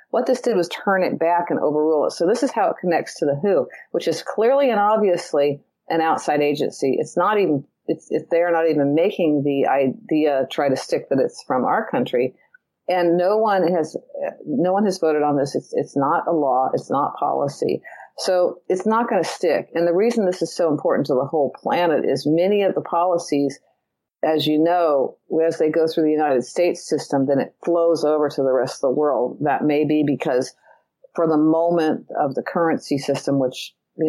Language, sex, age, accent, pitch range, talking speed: English, female, 50-69, American, 140-175 Hz, 210 wpm